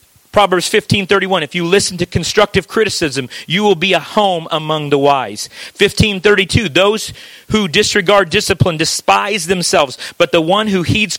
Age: 40-59